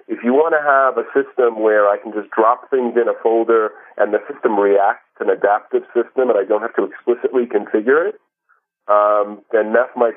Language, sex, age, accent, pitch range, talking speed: English, male, 40-59, American, 105-140 Hz, 205 wpm